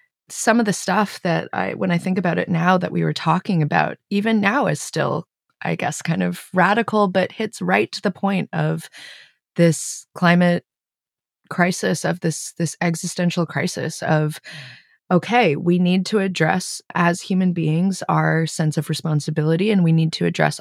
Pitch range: 165-200 Hz